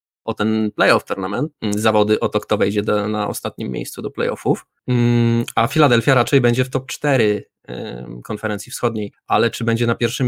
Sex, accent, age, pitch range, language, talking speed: male, native, 20-39, 105-130 Hz, Polish, 170 wpm